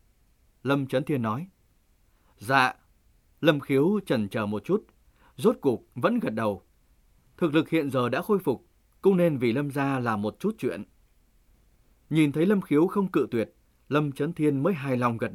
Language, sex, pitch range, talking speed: Vietnamese, male, 125-165 Hz, 180 wpm